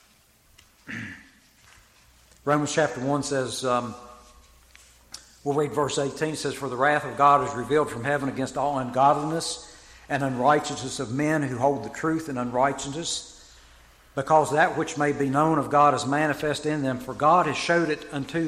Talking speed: 165 wpm